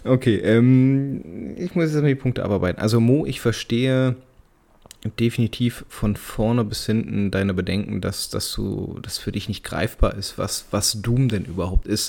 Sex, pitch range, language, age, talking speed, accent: male, 105-135 Hz, German, 20-39, 165 wpm, German